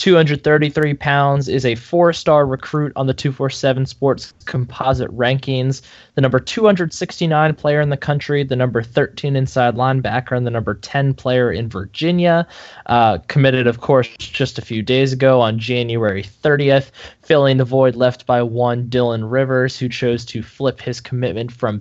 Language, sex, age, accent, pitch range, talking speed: English, male, 10-29, American, 120-155 Hz, 160 wpm